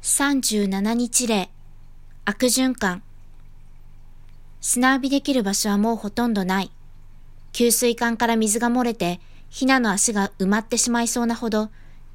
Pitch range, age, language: 185-235 Hz, 20-39, Japanese